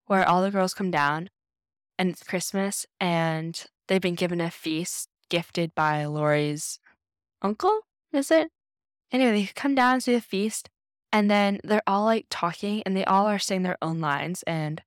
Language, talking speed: English, 175 wpm